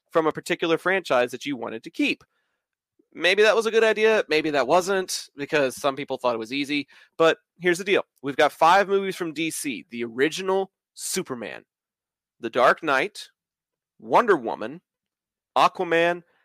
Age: 30-49